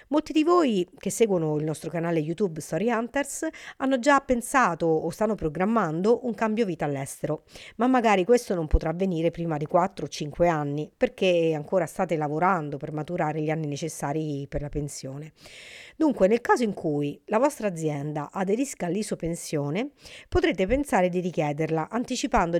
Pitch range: 160-235 Hz